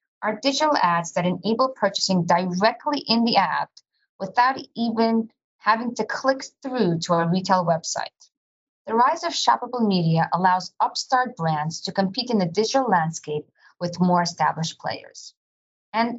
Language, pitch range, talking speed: English, 170-235 Hz, 145 wpm